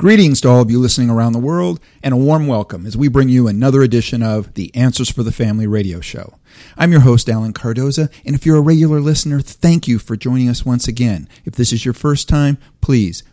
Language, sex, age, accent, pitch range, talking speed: English, male, 50-69, American, 105-130 Hz, 235 wpm